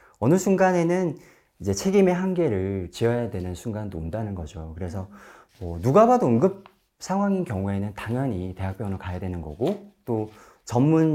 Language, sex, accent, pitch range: Korean, male, native, 95-145 Hz